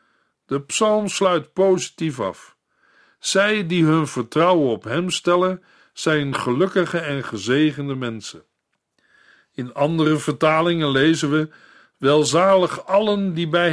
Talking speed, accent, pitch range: 115 wpm, Dutch, 145-180 Hz